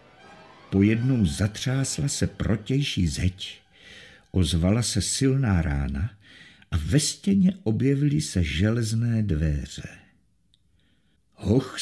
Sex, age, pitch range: male, 50-69, 90-115 Hz